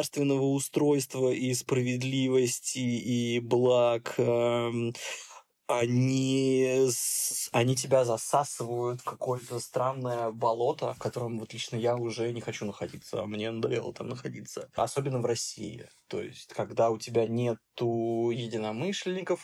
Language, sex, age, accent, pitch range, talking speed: Russian, male, 20-39, native, 115-130 Hz, 115 wpm